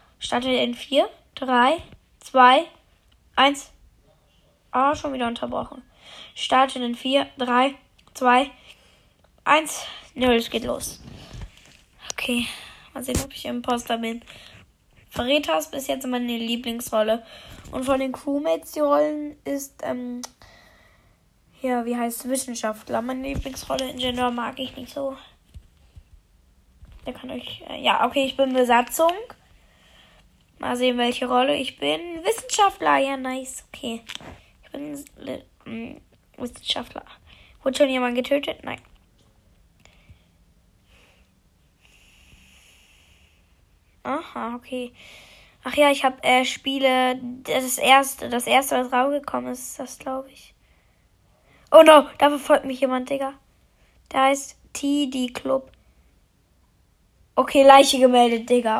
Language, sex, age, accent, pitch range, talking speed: German, female, 10-29, German, 205-275 Hz, 120 wpm